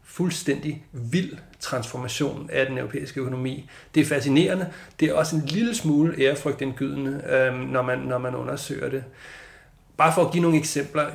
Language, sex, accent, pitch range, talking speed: Danish, male, native, 130-155 Hz, 160 wpm